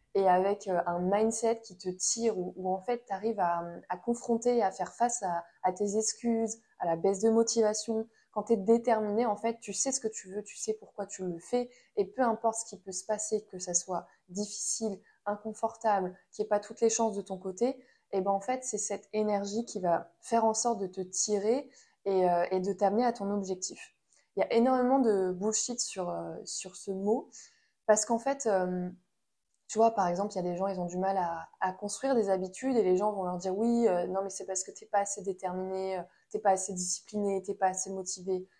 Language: French